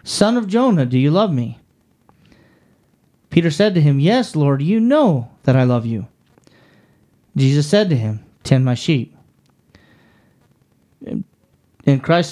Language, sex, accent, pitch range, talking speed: English, male, American, 140-205 Hz, 135 wpm